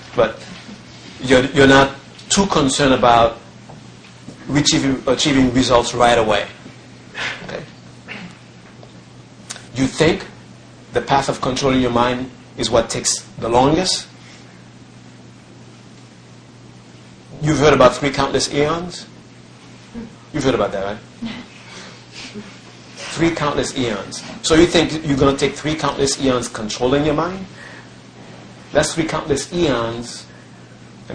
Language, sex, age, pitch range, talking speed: English, male, 50-69, 110-145 Hz, 115 wpm